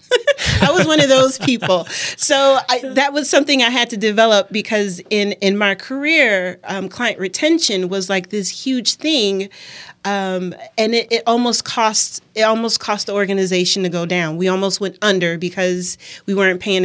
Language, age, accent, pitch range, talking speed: English, 30-49, American, 180-215 Hz, 175 wpm